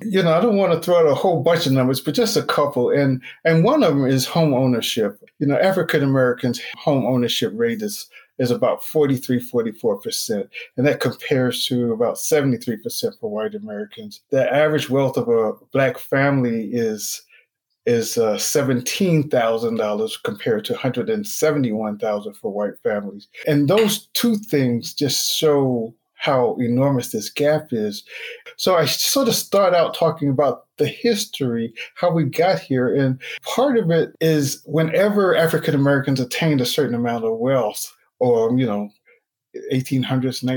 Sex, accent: male, American